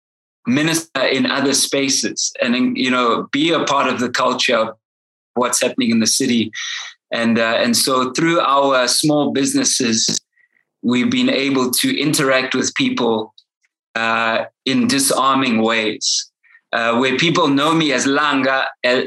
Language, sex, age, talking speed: English, male, 20-39, 140 wpm